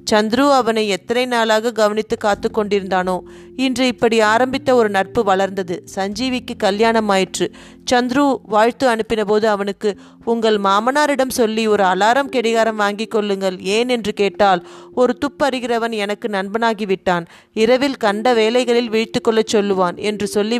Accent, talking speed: native, 130 wpm